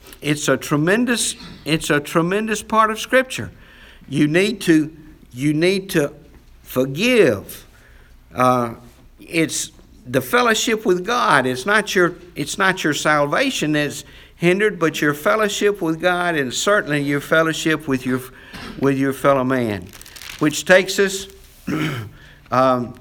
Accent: American